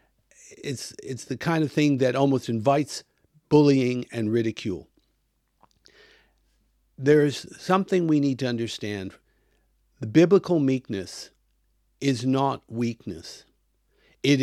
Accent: American